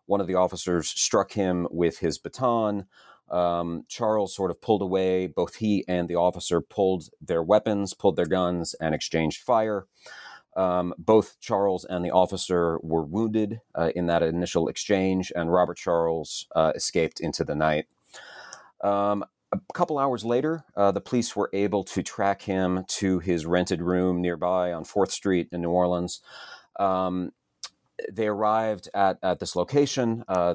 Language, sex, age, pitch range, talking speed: English, male, 30-49, 85-100 Hz, 160 wpm